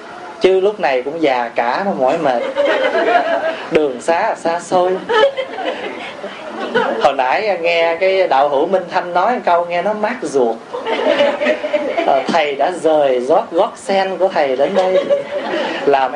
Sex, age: male, 20-39